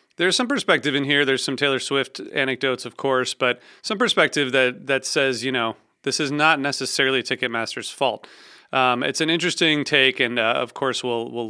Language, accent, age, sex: English, American, 30-49, male